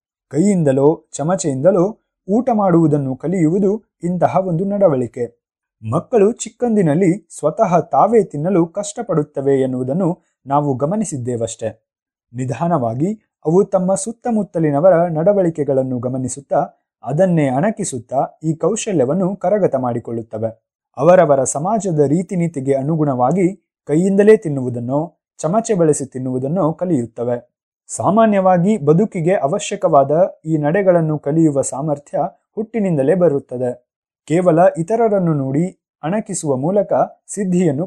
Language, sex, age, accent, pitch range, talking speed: Kannada, male, 20-39, native, 135-195 Hz, 85 wpm